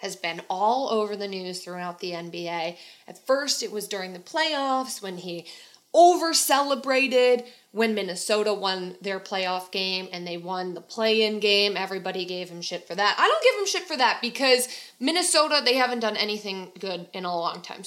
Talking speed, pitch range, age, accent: 185 wpm, 190-240 Hz, 20-39, American